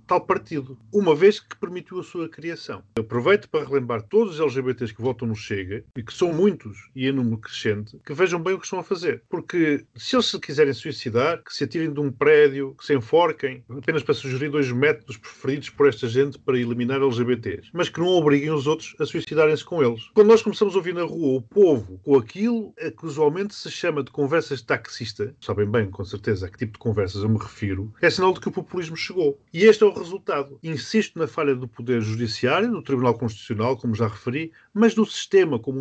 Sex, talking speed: male, 225 wpm